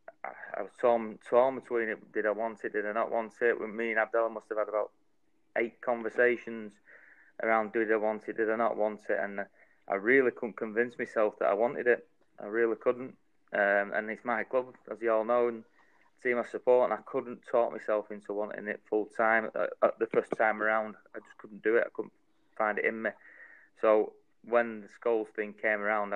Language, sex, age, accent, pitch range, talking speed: English, male, 20-39, British, 105-115 Hz, 220 wpm